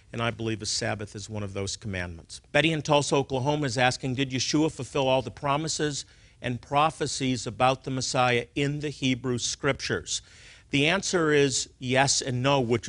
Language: English